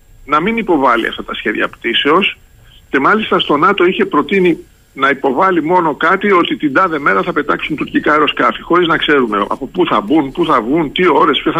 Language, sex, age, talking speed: Greek, male, 50-69, 200 wpm